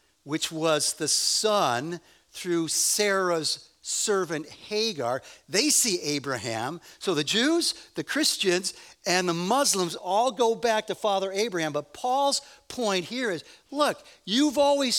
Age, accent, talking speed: 50-69, American, 130 wpm